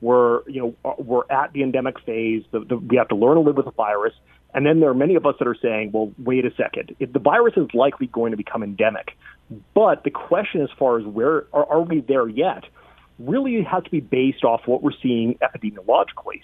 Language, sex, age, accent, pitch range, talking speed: English, male, 30-49, American, 120-145 Hz, 235 wpm